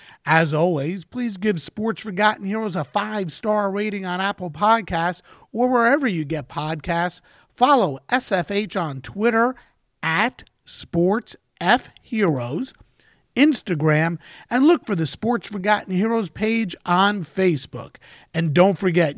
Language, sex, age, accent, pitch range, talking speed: English, male, 50-69, American, 160-215 Hz, 120 wpm